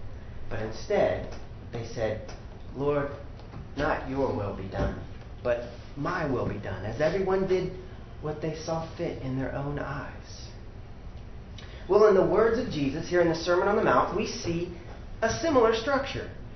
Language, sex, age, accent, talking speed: English, male, 40-59, American, 160 wpm